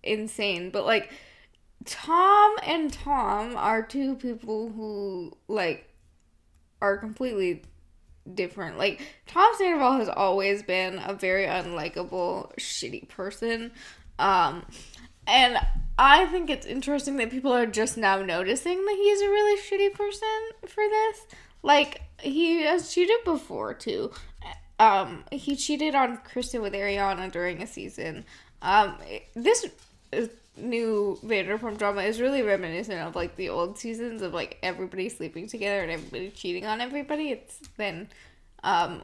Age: 10-29